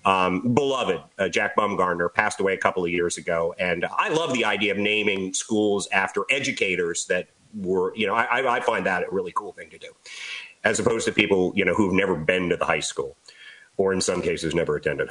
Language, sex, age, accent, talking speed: English, male, 40-59, American, 220 wpm